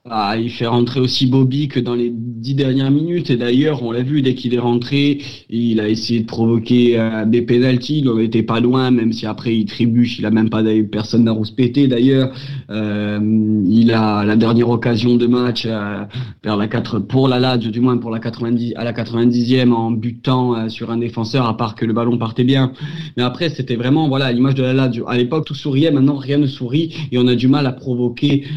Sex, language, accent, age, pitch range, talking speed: male, French, French, 30-49, 115-145 Hz, 225 wpm